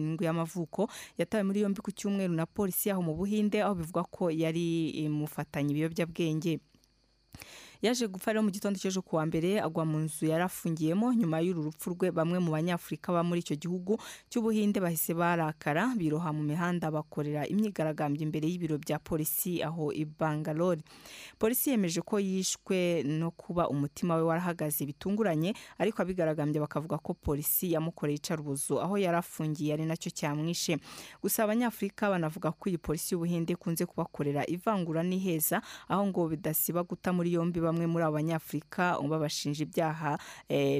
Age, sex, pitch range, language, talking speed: 30-49, female, 155-190 Hz, Indonesian, 150 wpm